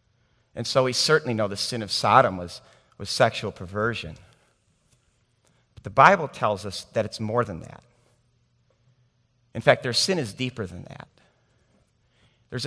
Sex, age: male, 50-69